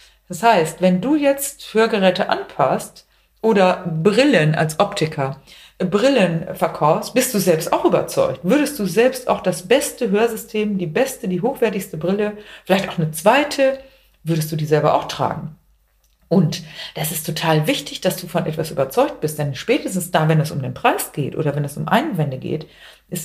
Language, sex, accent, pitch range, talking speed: German, female, German, 160-215 Hz, 175 wpm